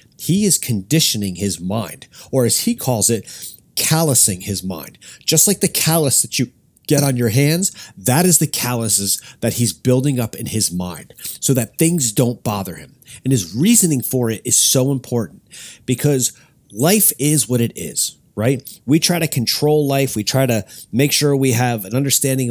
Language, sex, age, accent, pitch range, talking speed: English, male, 30-49, American, 115-150 Hz, 185 wpm